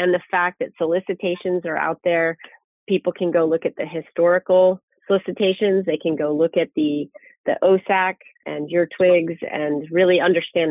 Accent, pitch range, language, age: American, 165-190 Hz, English, 30-49